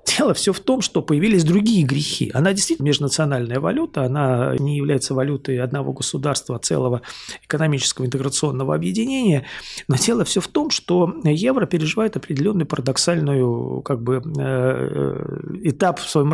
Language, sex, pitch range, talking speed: Russian, male, 135-170 Hz, 135 wpm